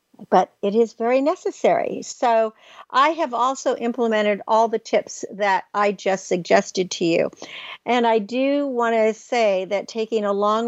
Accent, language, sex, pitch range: American, English, female, 200-245 Hz